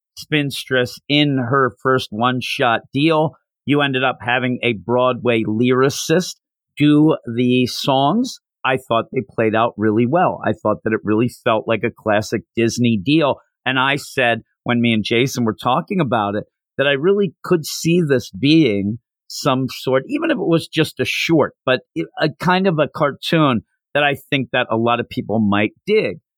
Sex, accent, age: male, American, 50-69